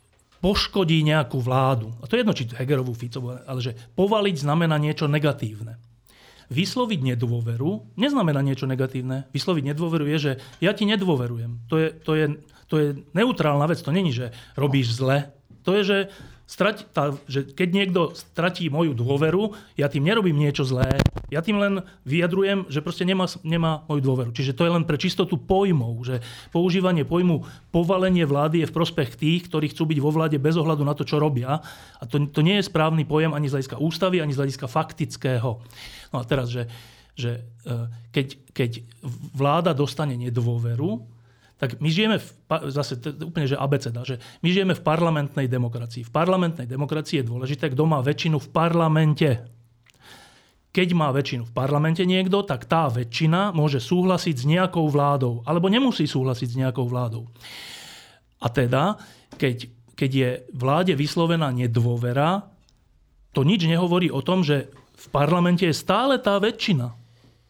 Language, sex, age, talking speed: Slovak, male, 40-59, 160 wpm